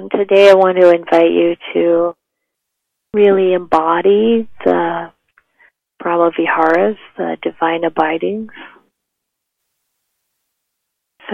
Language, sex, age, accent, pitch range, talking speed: English, female, 30-49, American, 165-190 Hz, 85 wpm